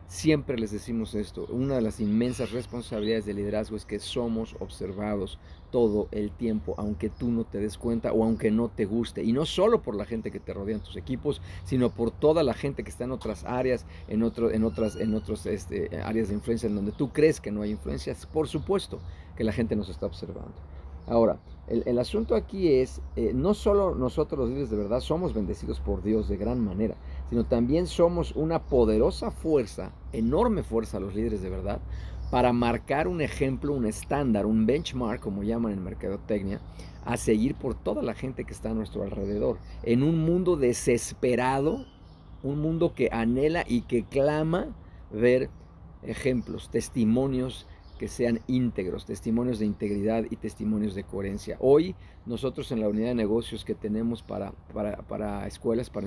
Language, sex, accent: Spanish, male, Mexican